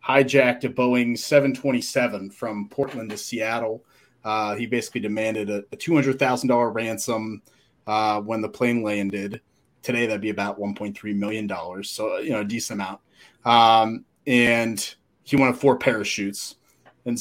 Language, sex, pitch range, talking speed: English, male, 105-135 Hz, 140 wpm